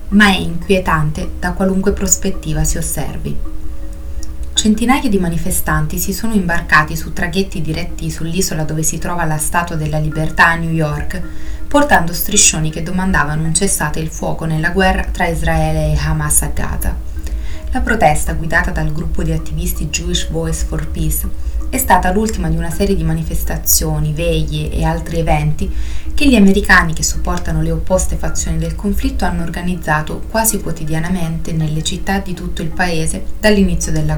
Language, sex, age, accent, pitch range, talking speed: Italian, female, 20-39, native, 155-190 Hz, 155 wpm